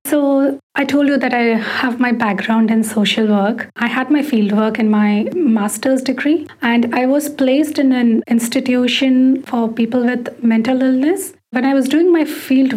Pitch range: 225-265 Hz